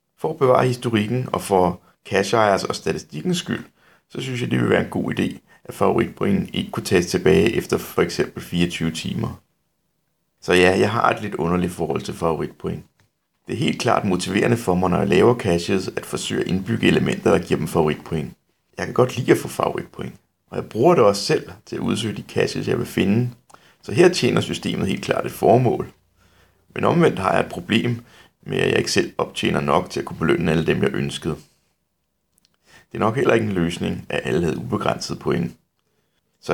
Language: Danish